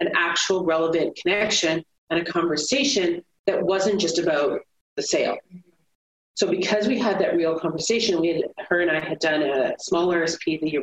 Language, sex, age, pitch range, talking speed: English, female, 30-49, 145-200 Hz, 175 wpm